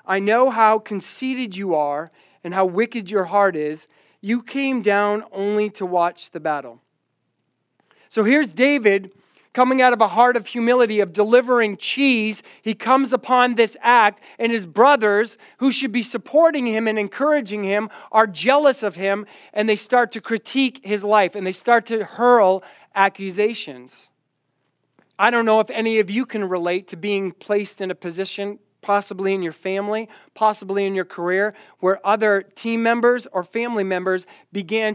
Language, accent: English, American